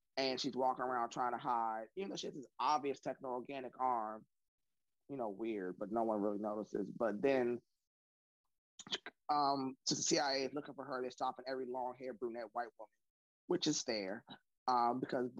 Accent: American